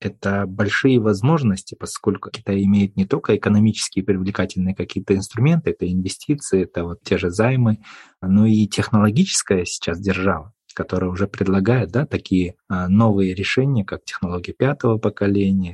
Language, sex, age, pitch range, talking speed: Russian, male, 20-39, 100-120 Hz, 135 wpm